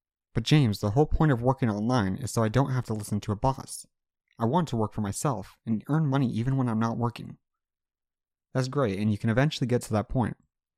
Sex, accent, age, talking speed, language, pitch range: male, American, 30-49, 235 wpm, English, 105-135 Hz